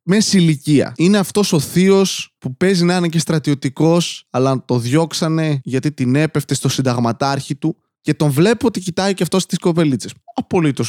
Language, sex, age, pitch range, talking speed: Greek, male, 20-39, 135-195 Hz, 175 wpm